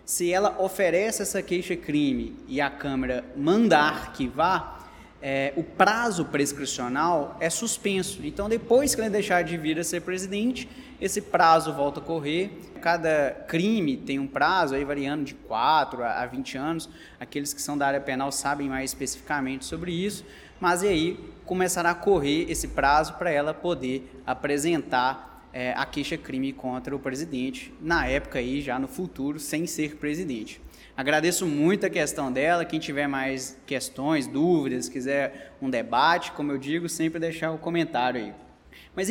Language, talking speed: Portuguese, 155 wpm